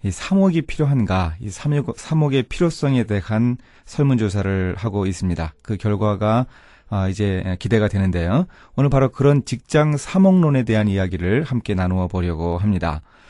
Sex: male